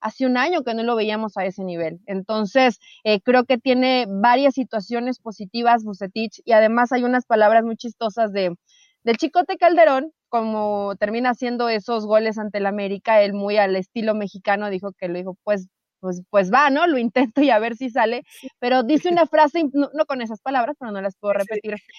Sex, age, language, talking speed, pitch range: female, 30-49, Spanish, 195 wpm, 205-275 Hz